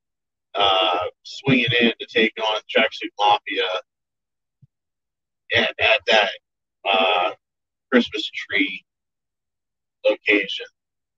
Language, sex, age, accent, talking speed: English, male, 40-59, American, 80 wpm